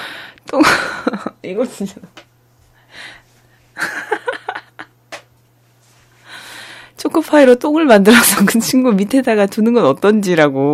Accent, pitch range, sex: native, 145-210 Hz, female